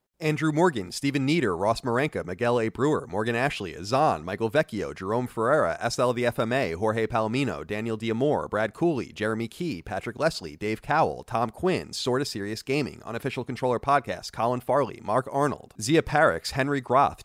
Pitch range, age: 120-160 Hz, 30-49